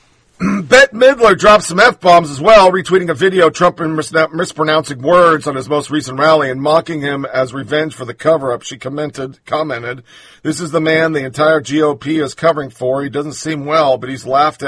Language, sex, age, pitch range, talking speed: English, male, 50-69, 145-195 Hz, 195 wpm